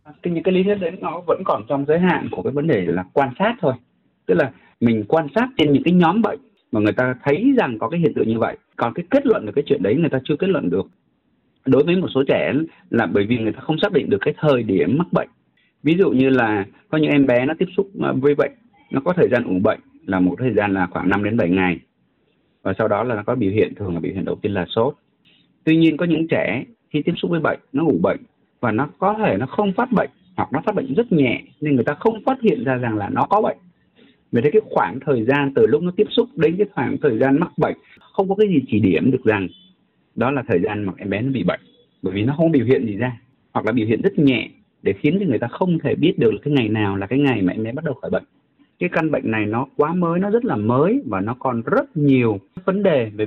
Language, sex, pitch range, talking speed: Vietnamese, male, 120-185 Hz, 280 wpm